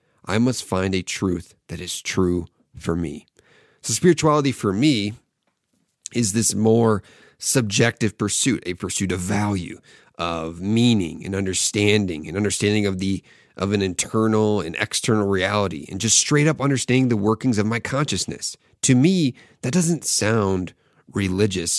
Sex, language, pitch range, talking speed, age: male, English, 95-120 Hz, 145 wpm, 30-49